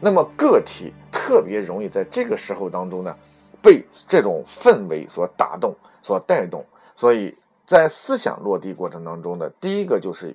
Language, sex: Chinese, male